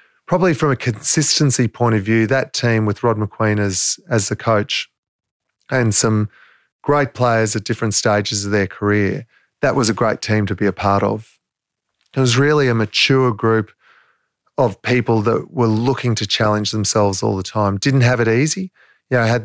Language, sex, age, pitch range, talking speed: English, male, 30-49, 105-120 Hz, 185 wpm